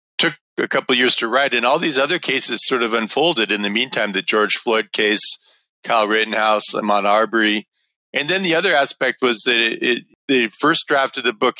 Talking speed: 205 wpm